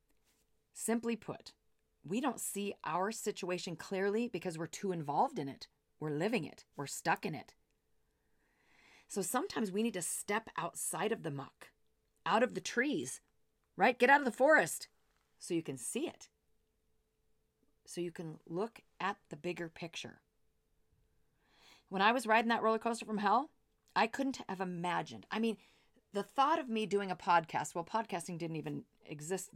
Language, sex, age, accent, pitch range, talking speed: English, female, 40-59, American, 170-225 Hz, 165 wpm